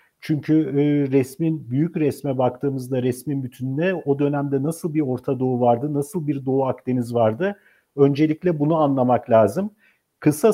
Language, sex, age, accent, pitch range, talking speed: Turkish, male, 50-69, native, 135-165 Hz, 140 wpm